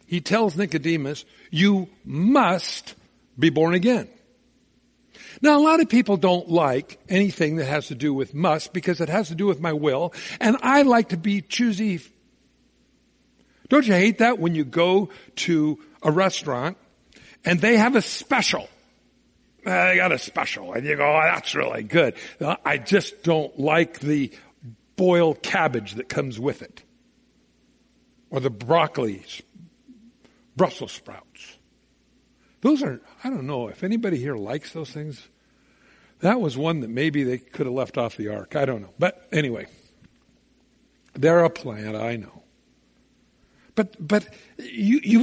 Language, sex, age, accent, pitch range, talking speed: English, male, 60-79, American, 150-220 Hz, 155 wpm